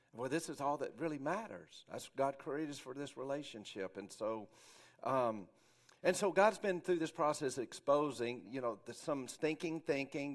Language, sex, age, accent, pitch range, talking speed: English, male, 50-69, American, 115-140 Hz, 180 wpm